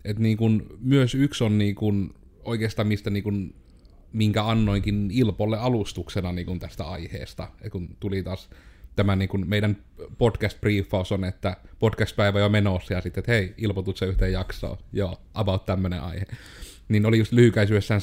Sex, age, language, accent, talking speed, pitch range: male, 30-49, Finnish, native, 140 wpm, 95-115 Hz